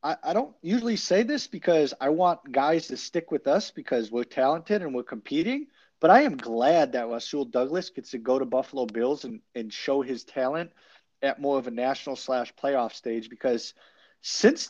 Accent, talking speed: American, 195 wpm